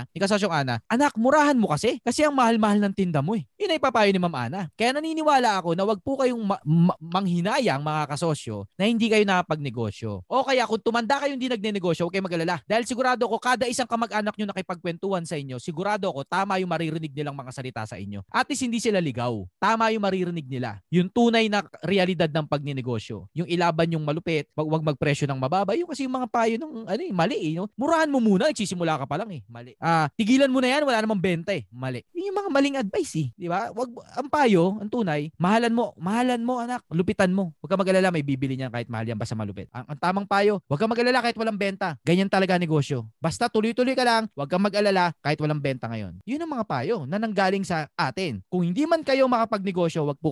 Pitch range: 150-225 Hz